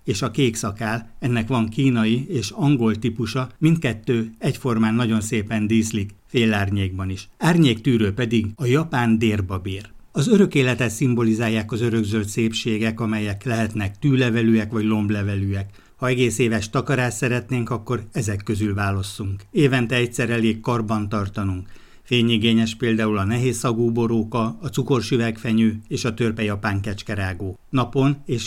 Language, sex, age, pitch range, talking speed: Hungarian, male, 60-79, 105-125 Hz, 130 wpm